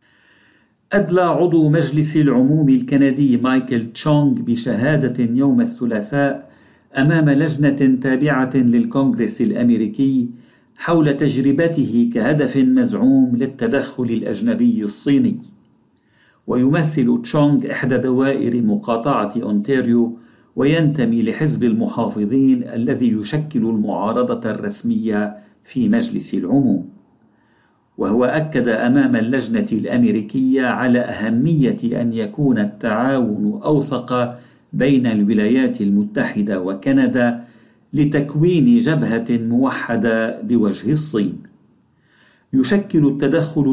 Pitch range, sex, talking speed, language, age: 120-165 Hz, male, 80 wpm, Arabic, 50-69